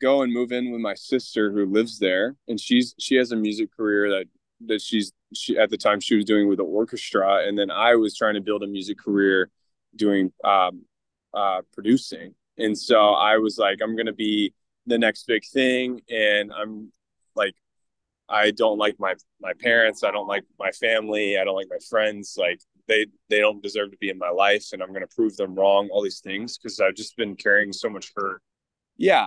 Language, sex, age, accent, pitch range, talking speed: English, male, 20-39, American, 95-115 Hz, 210 wpm